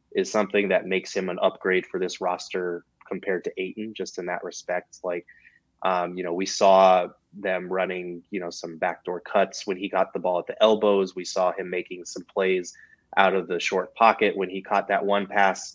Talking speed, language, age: 210 wpm, English, 20-39